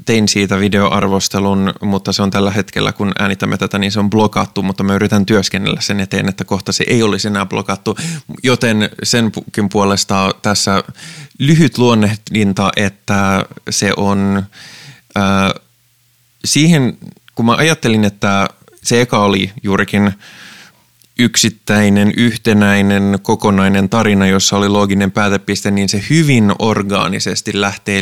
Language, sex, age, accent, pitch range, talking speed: Finnish, male, 20-39, native, 100-115 Hz, 130 wpm